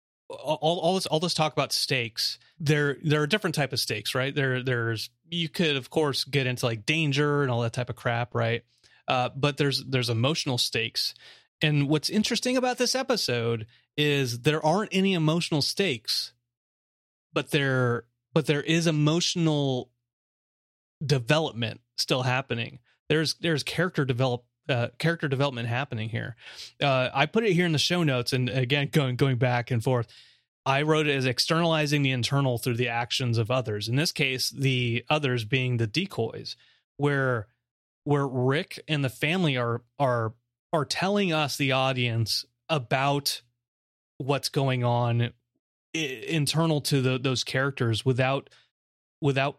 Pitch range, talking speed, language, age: 120-155 Hz, 155 wpm, English, 30-49